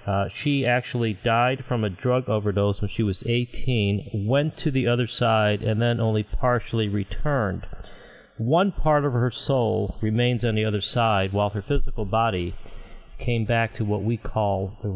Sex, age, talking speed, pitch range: male, 40-59, 175 wpm, 105-130 Hz